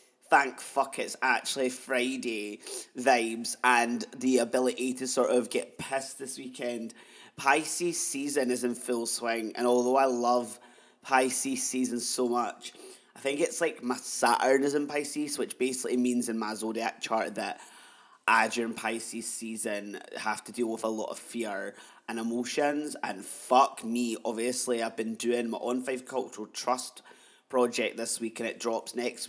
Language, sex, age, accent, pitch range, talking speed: English, male, 20-39, British, 115-140 Hz, 165 wpm